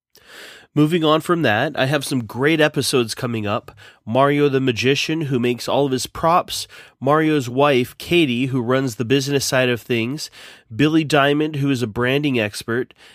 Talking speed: 170 wpm